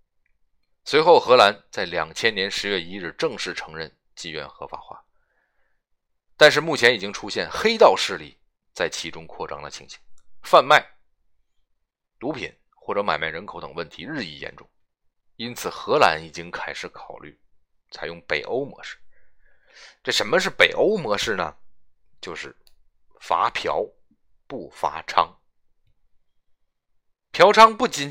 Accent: native